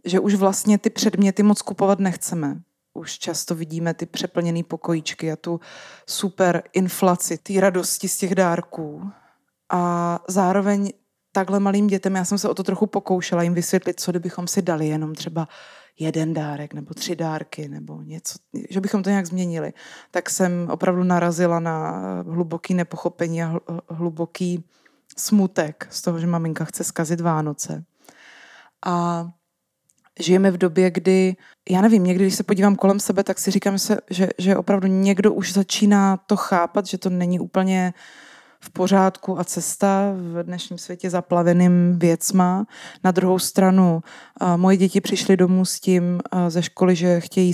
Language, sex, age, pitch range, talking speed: Czech, female, 20-39, 170-195 Hz, 155 wpm